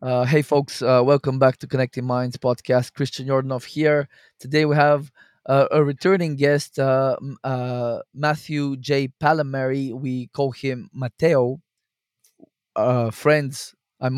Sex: male